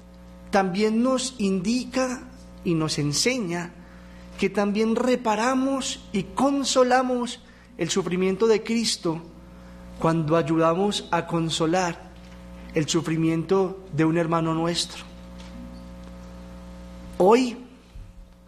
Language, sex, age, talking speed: Spanish, male, 40-59, 85 wpm